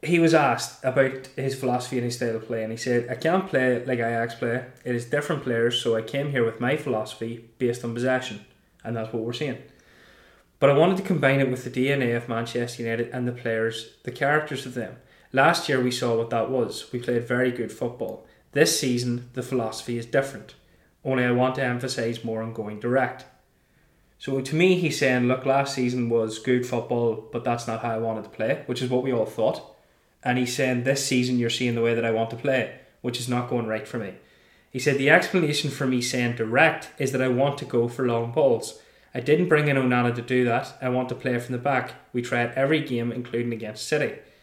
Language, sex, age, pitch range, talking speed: English, male, 20-39, 115-135 Hz, 230 wpm